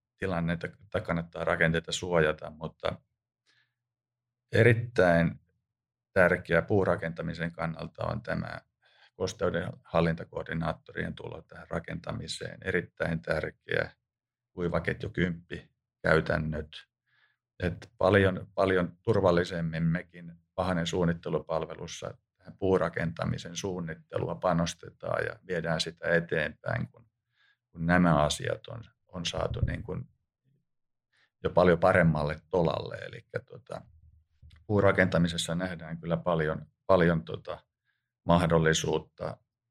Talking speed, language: 85 wpm, Finnish